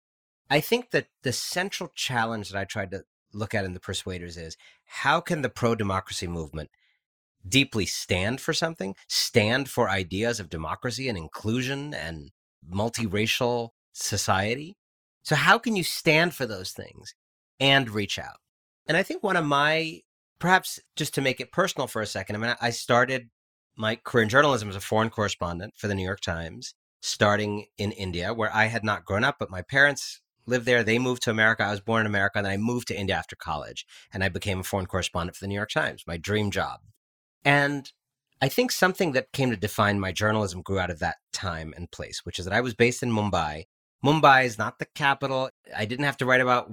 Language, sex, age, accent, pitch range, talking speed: English, male, 40-59, American, 95-130 Hz, 205 wpm